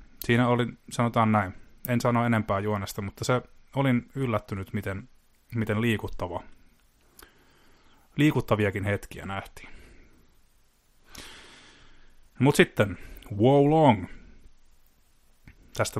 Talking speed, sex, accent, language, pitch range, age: 85 wpm, male, native, Finnish, 100-120 Hz, 30-49